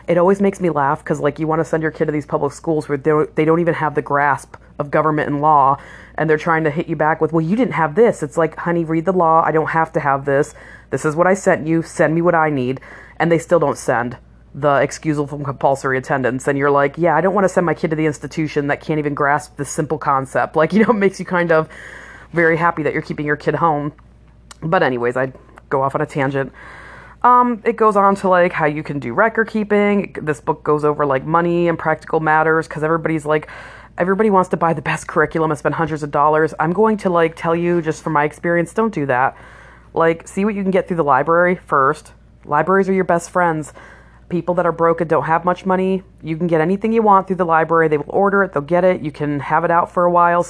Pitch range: 150-175 Hz